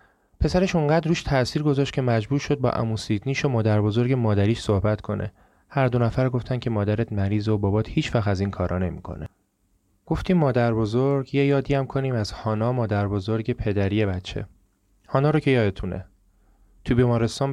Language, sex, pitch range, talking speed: Persian, male, 105-130 Hz, 160 wpm